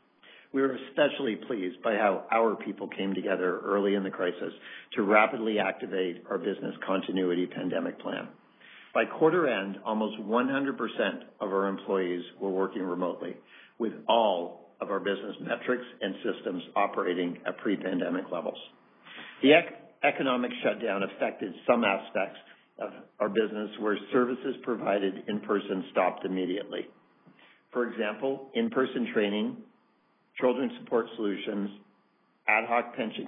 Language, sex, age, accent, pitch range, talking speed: English, male, 50-69, American, 95-120 Hz, 125 wpm